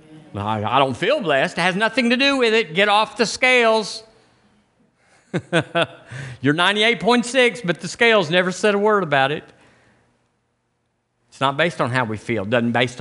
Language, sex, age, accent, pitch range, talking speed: English, male, 50-69, American, 110-165 Hz, 165 wpm